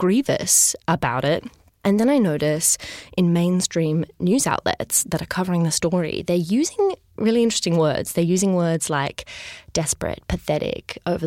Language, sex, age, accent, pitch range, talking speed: English, female, 20-39, Australian, 160-200 Hz, 150 wpm